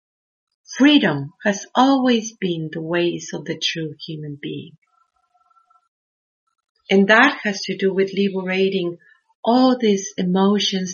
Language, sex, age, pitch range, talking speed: English, female, 50-69, 185-260 Hz, 115 wpm